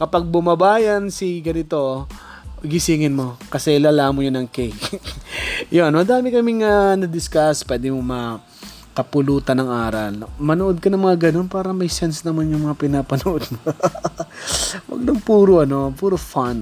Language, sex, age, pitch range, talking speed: Filipino, male, 20-39, 130-170 Hz, 150 wpm